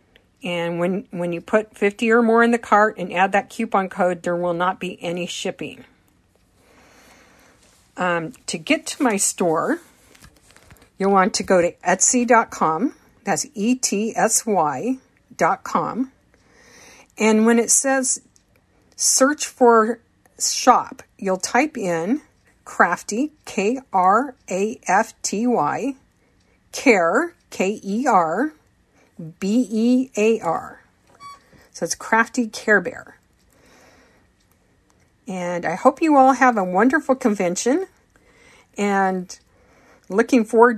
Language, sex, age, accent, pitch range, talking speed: English, female, 50-69, American, 190-250 Hz, 105 wpm